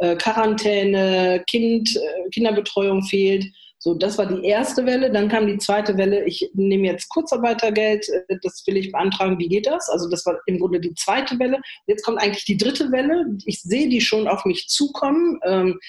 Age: 40-59